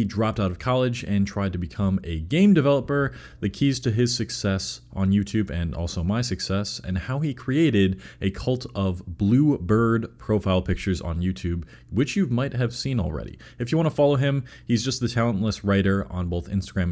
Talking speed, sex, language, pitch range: 195 wpm, male, English, 85-120 Hz